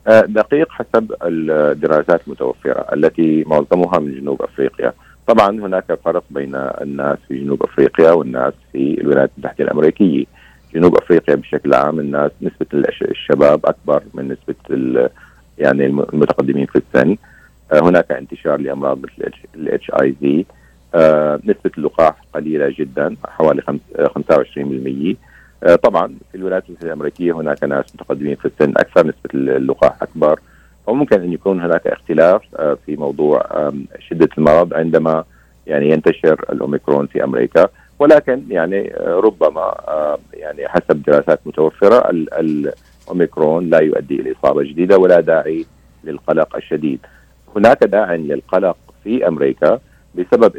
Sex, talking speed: male, 120 wpm